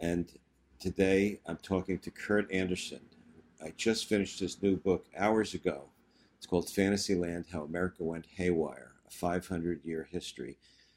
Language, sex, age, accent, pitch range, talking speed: English, male, 50-69, American, 85-100 Hz, 135 wpm